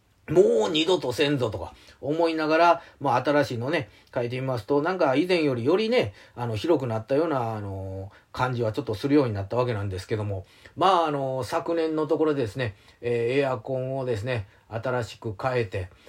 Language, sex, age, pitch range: Japanese, male, 40-59, 115-175 Hz